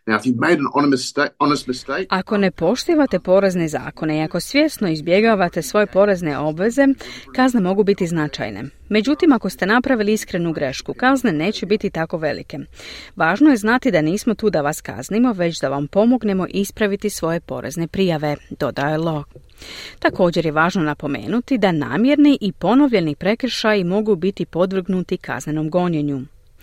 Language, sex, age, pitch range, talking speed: Croatian, female, 30-49, 155-225 Hz, 135 wpm